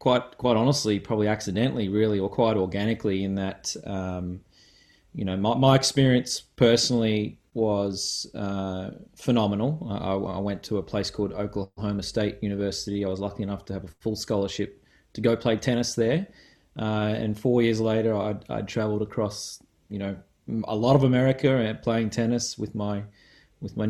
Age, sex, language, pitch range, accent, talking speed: 20-39, male, English, 100-115 Hz, Australian, 165 wpm